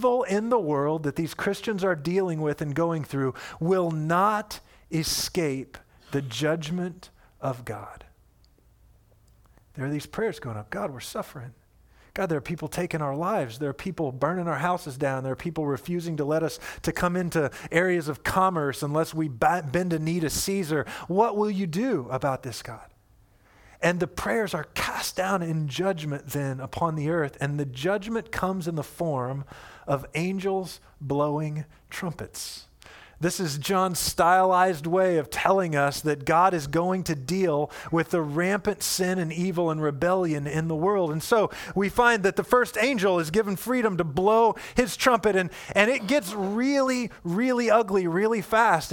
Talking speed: 175 wpm